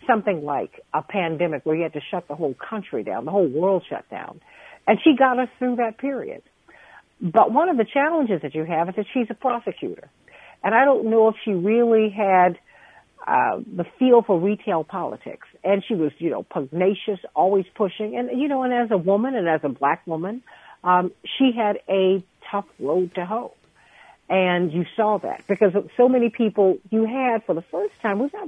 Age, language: 60-79, English